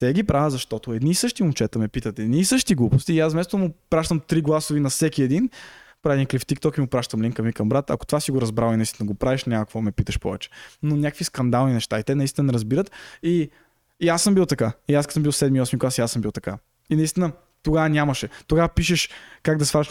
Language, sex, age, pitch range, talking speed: Bulgarian, male, 20-39, 130-170 Hz, 245 wpm